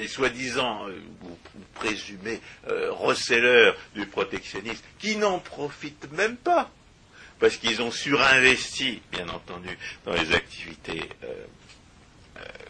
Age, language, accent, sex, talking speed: 60-79, French, French, male, 115 wpm